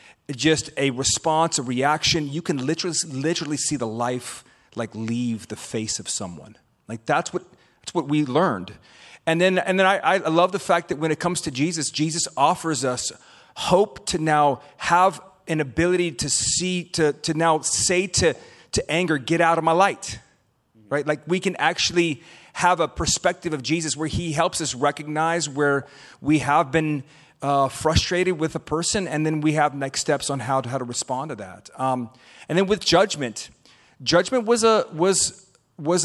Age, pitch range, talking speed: 30-49, 140-175 Hz, 185 wpm